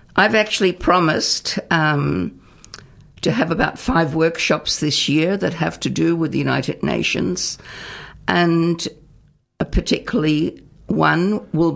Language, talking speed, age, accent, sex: English, 120 wpm, 60-79, Australian, female